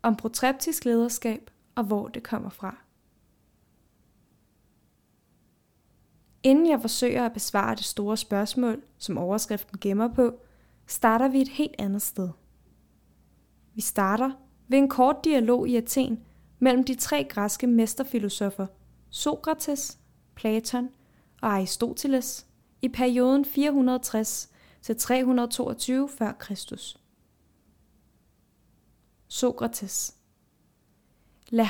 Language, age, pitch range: Danish, 10-29, 210-255 Hz